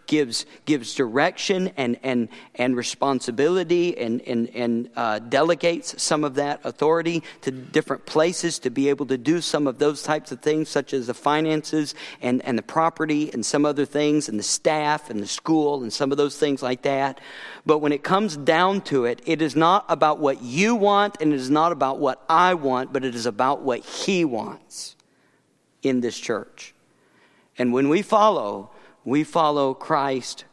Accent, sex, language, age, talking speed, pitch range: American, male, English, 50-69, 185 wpm, 130-160 Hz